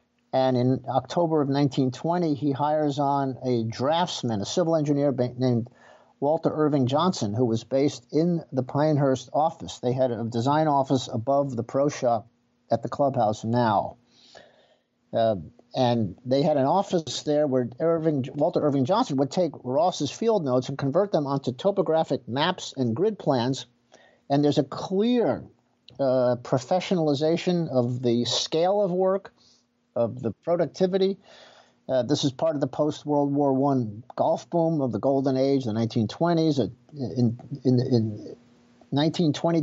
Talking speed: 150 wpm